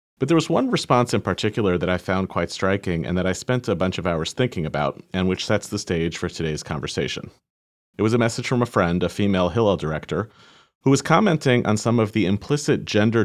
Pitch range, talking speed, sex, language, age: 85-110 Hz, 225 wpm, male, English, 40-59